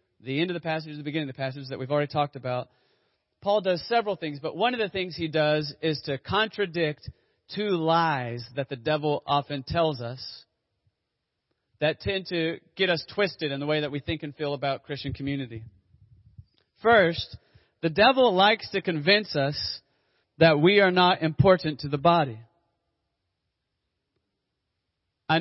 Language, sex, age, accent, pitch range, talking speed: English, male, 30-49, American, 125-185 Hz, 170 wpm